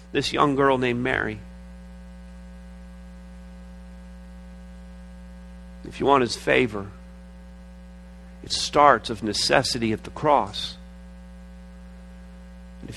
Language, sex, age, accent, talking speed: English, male, 40-59, American, 85 wpm